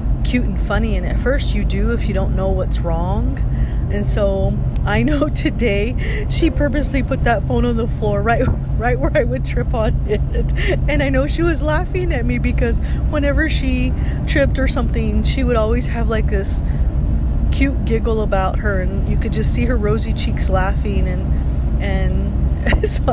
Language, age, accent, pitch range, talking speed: English, 30-49, American, 70-75 Hz, 185 wpm